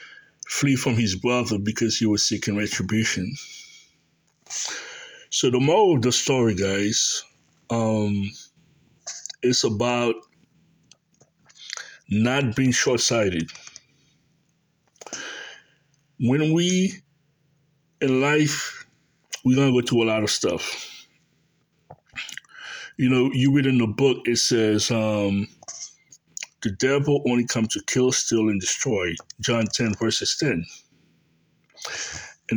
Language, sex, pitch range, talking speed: English, male, 110-145 Hz, 110 wpm